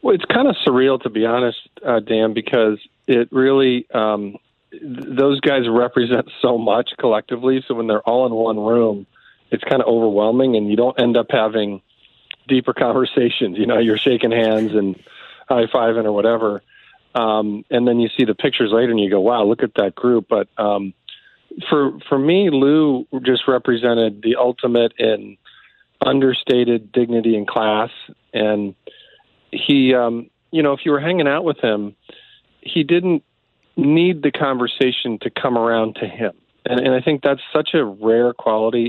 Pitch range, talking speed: 110-130 Hz, 175 wpm